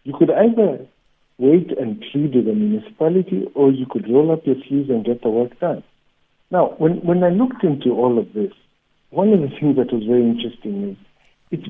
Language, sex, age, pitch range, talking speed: English, male, 60-79, 115-165 Hz, 205 wpm